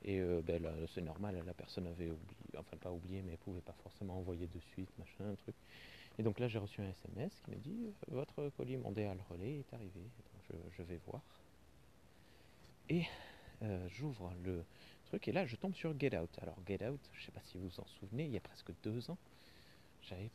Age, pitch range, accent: 30-49, 90-110 Hz, French